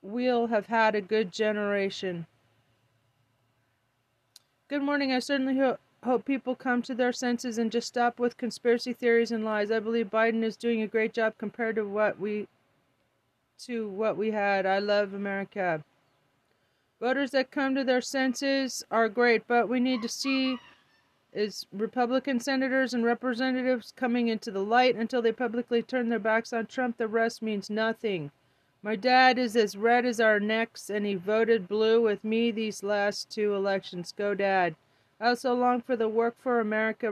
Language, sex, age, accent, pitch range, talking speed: English, female, 30-49, American, 195-245 Hz, 170 wpm